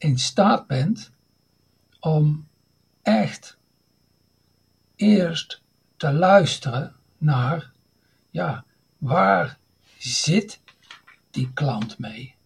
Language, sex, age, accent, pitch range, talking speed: Dutch, male, 60-79, Dutch, 130-185 Hz, 70 wpm